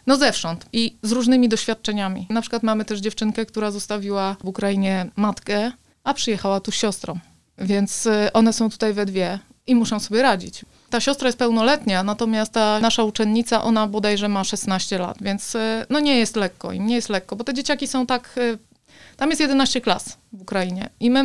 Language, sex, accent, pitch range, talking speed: Polish, female, native, 195-225 Hz, 185 wpm